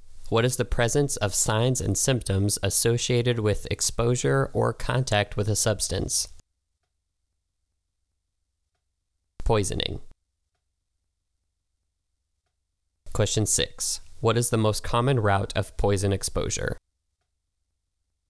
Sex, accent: male, American